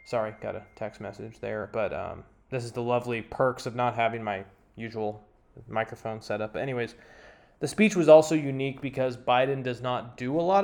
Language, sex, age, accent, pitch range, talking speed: English, male, 20-39, American, 120-150 Hz, 190 wpm